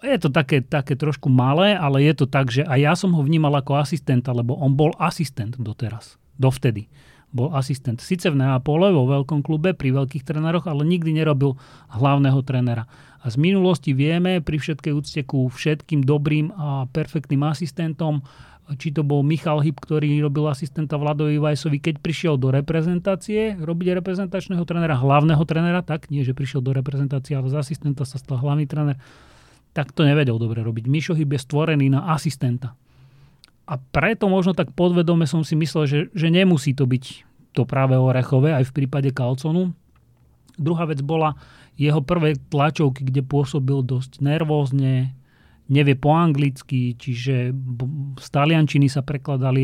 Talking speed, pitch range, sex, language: 160 wpm, 130-160 Hz, male, Slovak